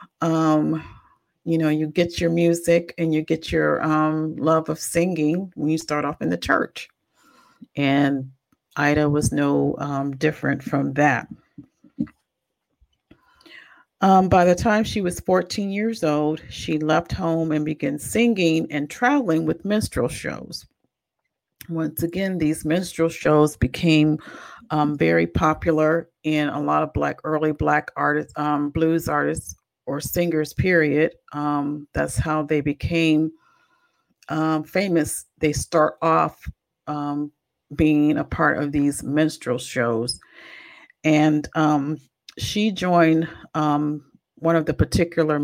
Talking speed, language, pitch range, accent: 130 wpm, English, 145-165 Hz, American